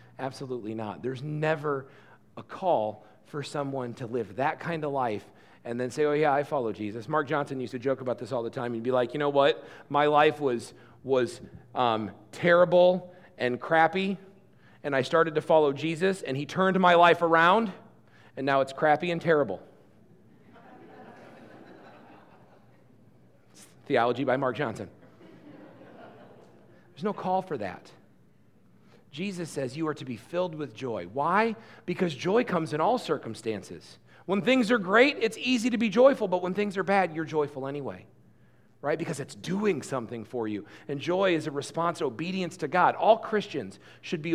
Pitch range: 130-180 Hz